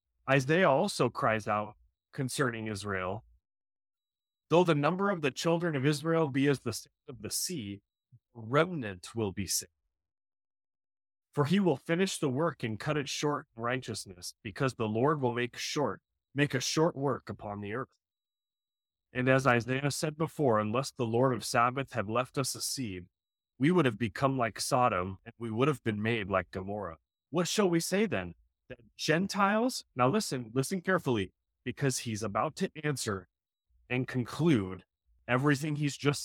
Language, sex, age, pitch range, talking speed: English, male, 30-49, 100-145 Hz, 165 wpm